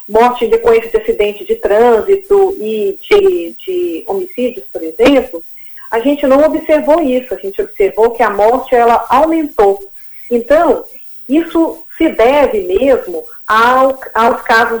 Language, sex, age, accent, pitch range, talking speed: Portuguese, female, 40-59, Brazilian, 230-365 Hz, 125 wpm